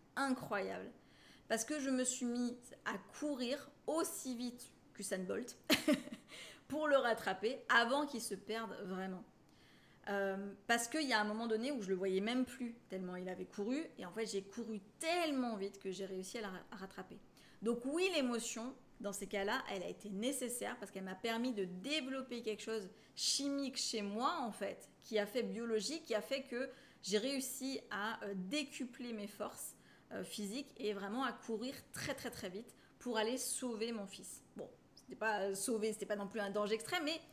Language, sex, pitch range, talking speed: French, female, 205-255 Hz, 185 wpm